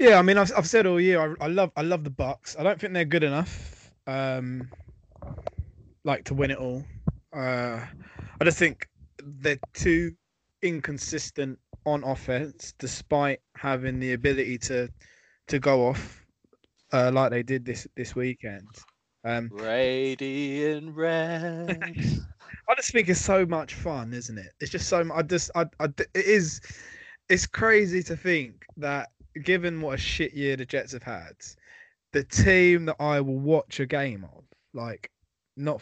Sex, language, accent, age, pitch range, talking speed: male, English, British, 20-39, 125-160 Hz, 165 wpm